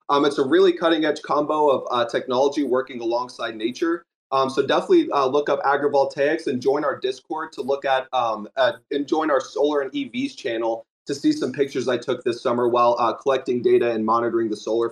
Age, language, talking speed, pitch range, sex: 30-49, English, 210 wpm, 130-165 Hz, male